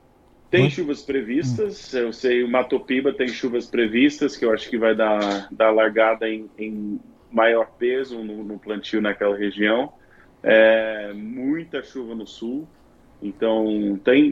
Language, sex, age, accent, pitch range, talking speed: Portuguese, male, 20-39, Brazilian, 110-140 Hz, 145 wpm